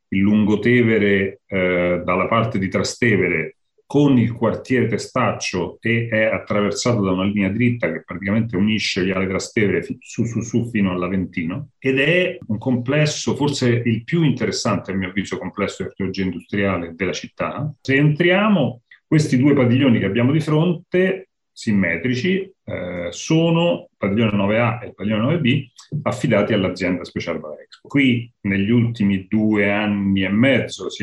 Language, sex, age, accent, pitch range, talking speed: Italian, male, 40-59, native, 95-135 Hz, 145 wpm